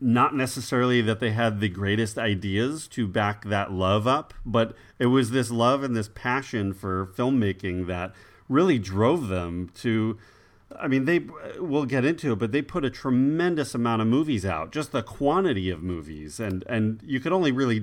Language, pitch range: English, 100-125 Hz